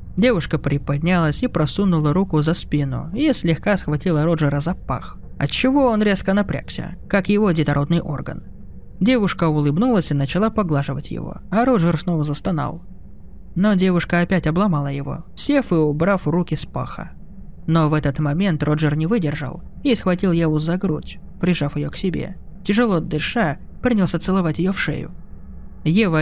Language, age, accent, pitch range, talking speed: Russian, 20-39, native, 150-195 Hz, 150 wpm